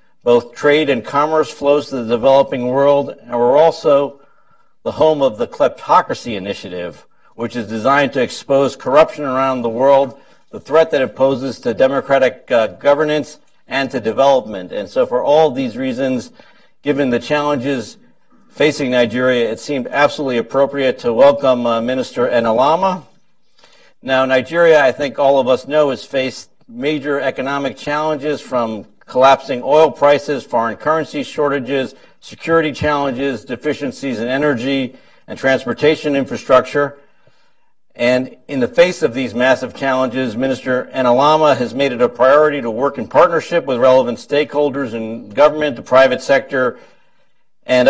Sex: male